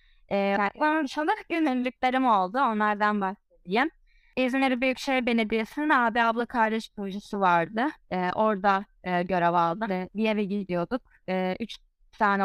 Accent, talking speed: native, 130 wpm